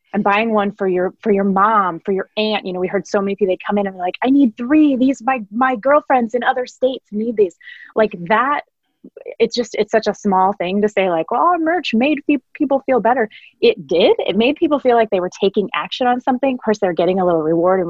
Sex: female